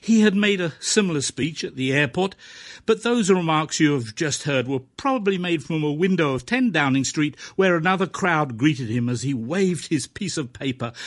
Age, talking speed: 60-79, 205 wpm